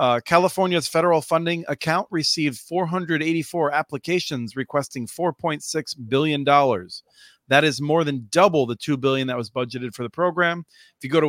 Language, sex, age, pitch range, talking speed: English, male, 40-59, 135-165 Hz, 155 wpm